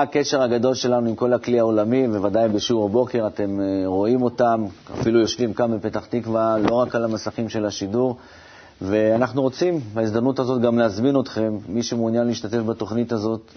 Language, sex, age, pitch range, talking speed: Hebrew, male, 30-49, 105-120 Hz, 160 wpm